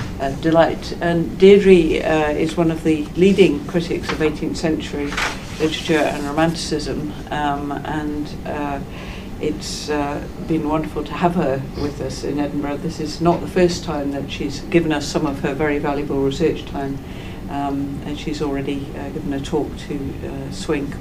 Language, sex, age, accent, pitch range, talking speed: English, female, 60-79, British, 140-160 Hz, 165 wpm